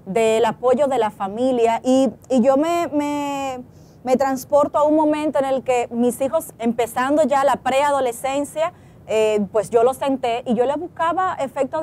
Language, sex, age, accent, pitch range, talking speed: Spanish, female, 30-49, American, 235-295 Hz, 170 wpm